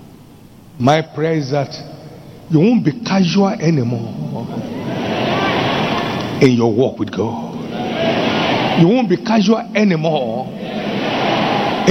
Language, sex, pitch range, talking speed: English, male, 155-205 Hz, 95 wpm